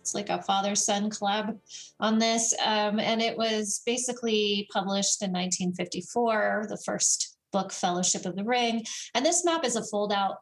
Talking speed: 160 wpm